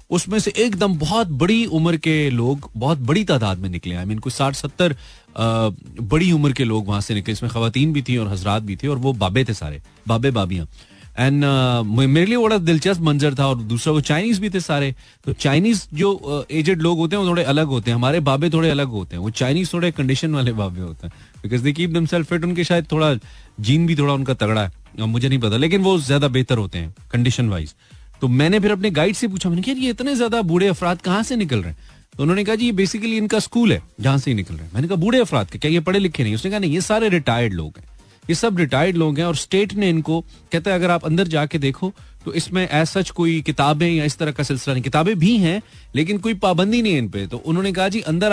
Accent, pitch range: native, 125-180 Hz